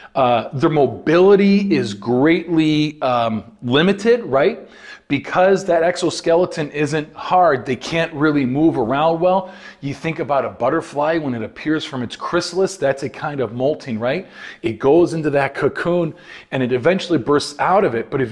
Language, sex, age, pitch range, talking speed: English, male, 40-59, 140-185 Hz, 165 wpm